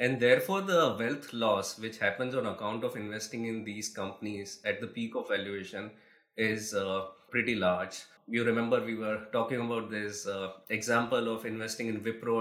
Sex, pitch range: male, 105-130 Hz